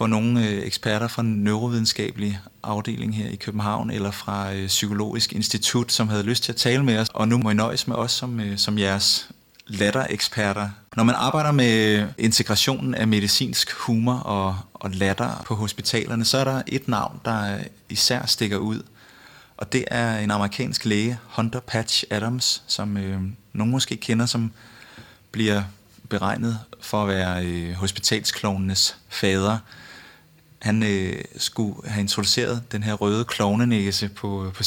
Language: Danish